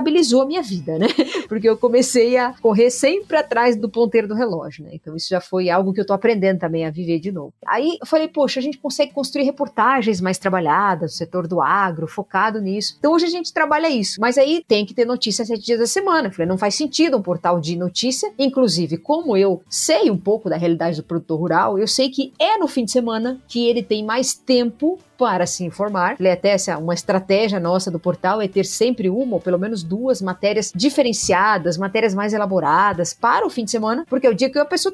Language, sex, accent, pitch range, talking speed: Portuguese, female, Brazilian, 185-265 Hz, 220 wpm